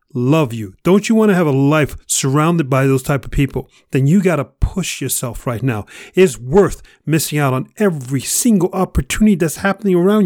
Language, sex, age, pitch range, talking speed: English, male, 40-59, 130-185 Hz, 200 wpm